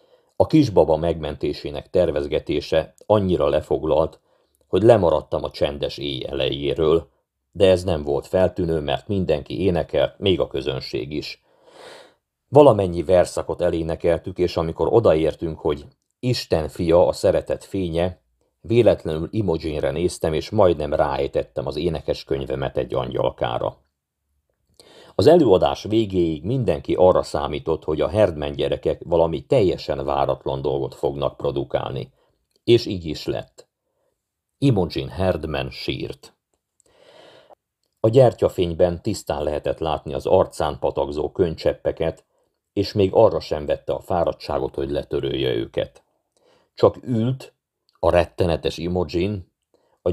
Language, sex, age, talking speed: Hungarian, male, 50-69, 115 wpm